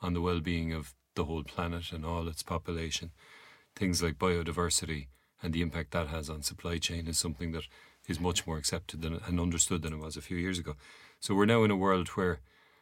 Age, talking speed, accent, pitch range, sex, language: 40-59, 215 wpm, Irish, 80-90 Hz, male, English